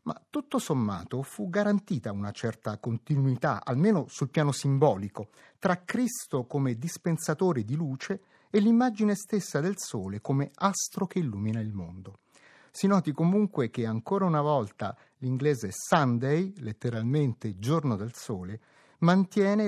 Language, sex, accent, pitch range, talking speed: Italian, male, native, 120-175 Hz, 130 wpm